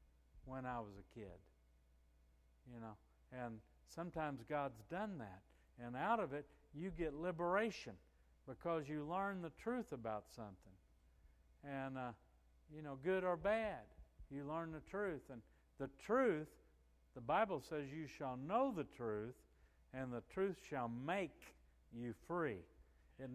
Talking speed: 145 wpm